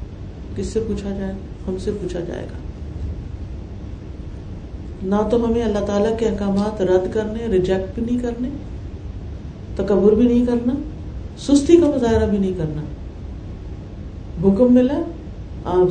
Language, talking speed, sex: Urdu, 130 wpm, female